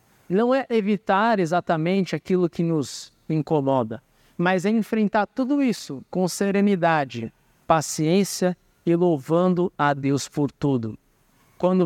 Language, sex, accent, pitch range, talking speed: Portuguese, male, Brazilian, 160-230 Hz, 115 wpm